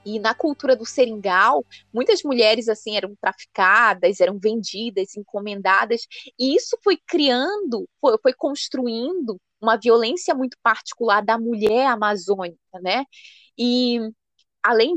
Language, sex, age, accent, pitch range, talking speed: Portuguese, female, 20-39, Brazilian, 205-270 Hz, 115 wpm